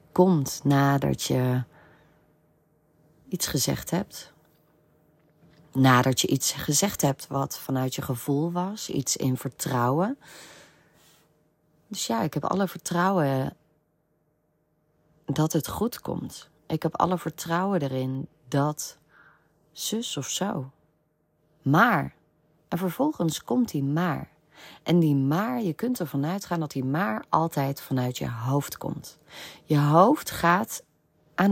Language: Dutch